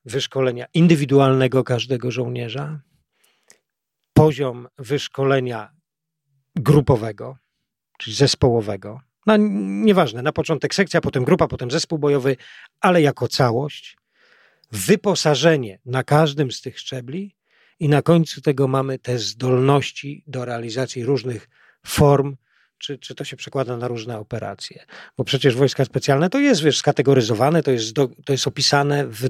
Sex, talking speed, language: male, 125 wpm, Polish